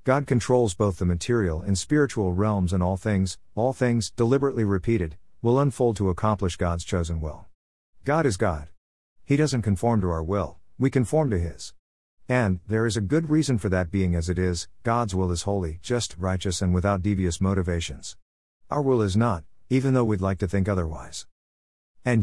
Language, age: English, 50-69